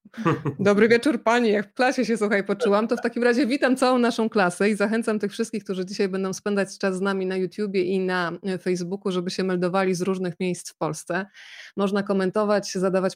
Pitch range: 185-215 Hz